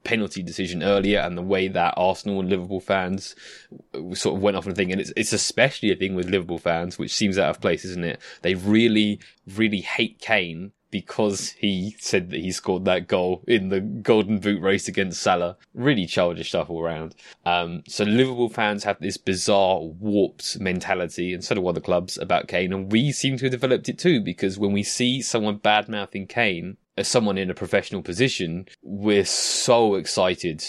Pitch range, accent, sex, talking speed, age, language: 90-105 Hz, British, male, 190 wpm, 20-39, English